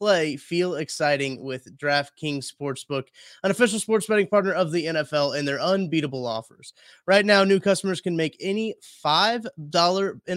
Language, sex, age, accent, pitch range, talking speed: English, male, 20-39, American, 135-175 Hz, 150 wpm